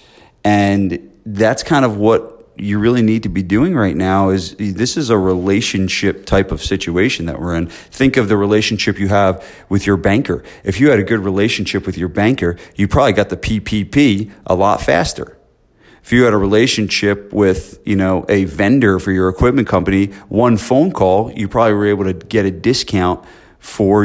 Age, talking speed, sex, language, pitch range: 40-59, 190 wpm, male, English, 95-110 Hz